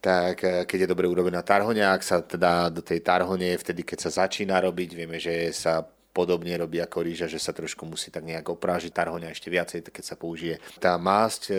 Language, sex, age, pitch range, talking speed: Slovak, male, 30-49, 90-105 Hz, 200 wpm